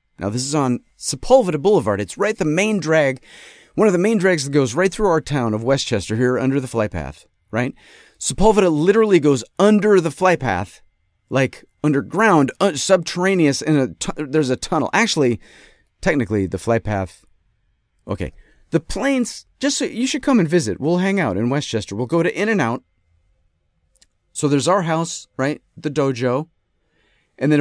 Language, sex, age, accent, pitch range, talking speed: English, male, 40-59, American, 110-180 Hz, 160 wpm